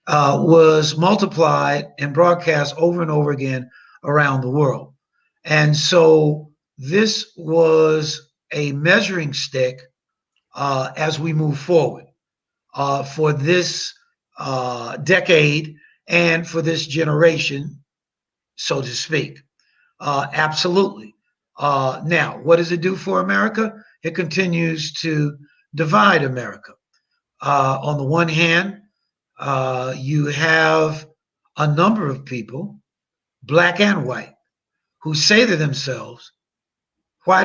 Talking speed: 115 wpm